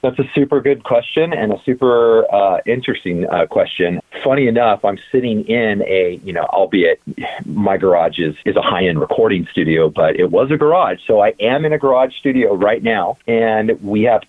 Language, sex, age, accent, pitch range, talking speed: English, male, 40-59, American, 100-145 Hz, 195 wpm